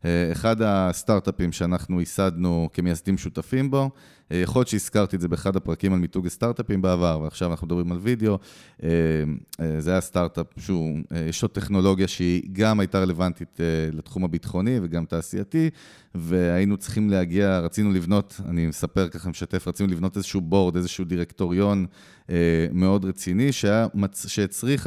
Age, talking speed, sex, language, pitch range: 30-49, 140 wpm, male, Hebrew, 85-105 Hz